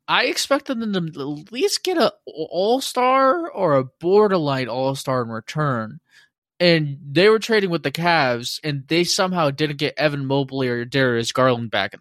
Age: 20-39